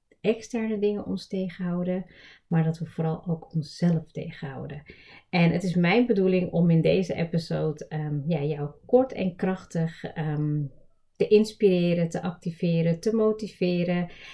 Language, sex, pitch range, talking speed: Dutch, female, 160-185 Hz, 125 wpm